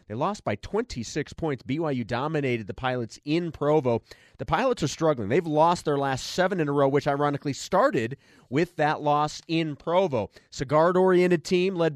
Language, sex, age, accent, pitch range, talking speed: English, male, 30-49, American, 135-175 Hz, 175 wpm